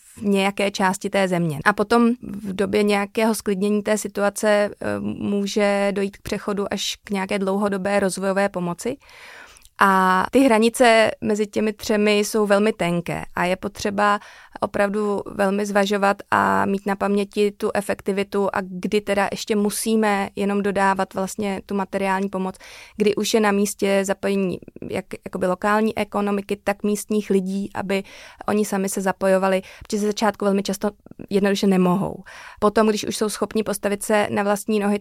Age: 30-49